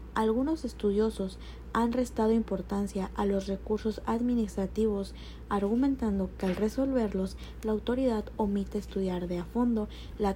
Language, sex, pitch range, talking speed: Spanish, female, 200-225 Hz, 120 wpm